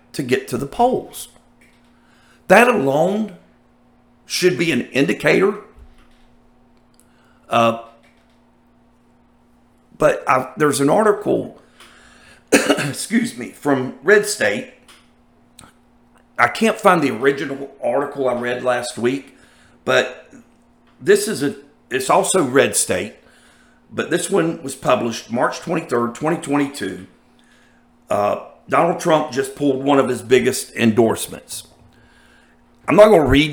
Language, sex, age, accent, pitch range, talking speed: English, male, 50-69, American, 115-150 Hz, 110 wpm